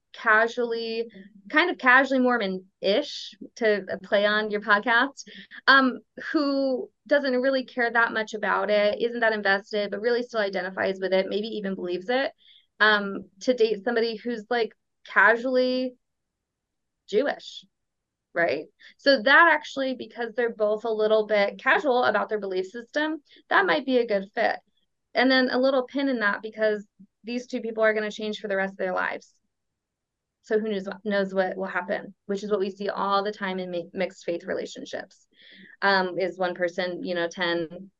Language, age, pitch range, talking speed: English, 20-39, 195-245 Hz, 175 wpm